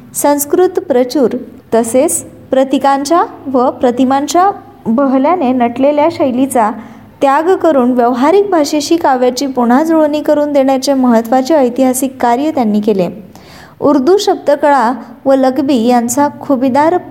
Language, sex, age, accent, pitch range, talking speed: Marathi, female, 20-39, native, 240-290 Hz, 100 wpm